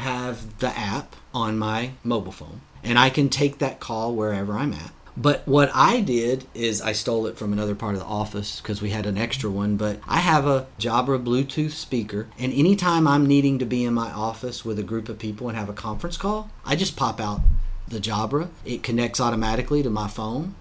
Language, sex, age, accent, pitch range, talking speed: English, male, 40-59, American, 110-150 Hz, 215 wpm